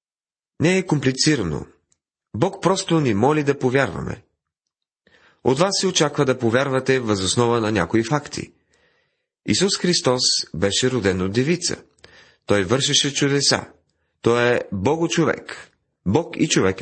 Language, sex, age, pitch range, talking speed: Bulgarian, male, 30-49, 115-150 Hz, 125 wpm